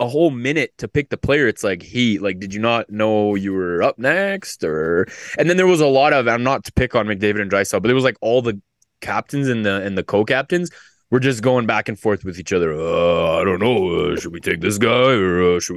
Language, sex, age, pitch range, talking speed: English, male, 20-39, 100-130 Hz, 265 wpm